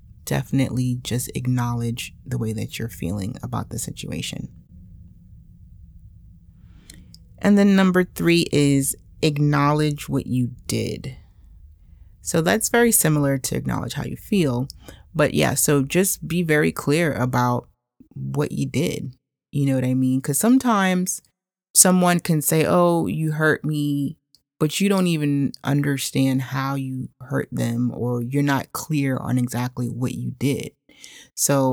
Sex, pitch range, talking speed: female, 120-150 Hz, 140 wpm